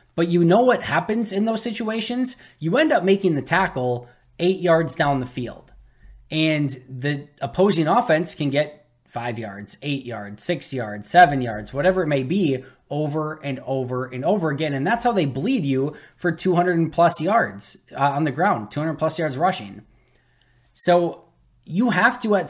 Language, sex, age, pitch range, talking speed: English, male, 20-39, 140-180 Hz, 175 wpm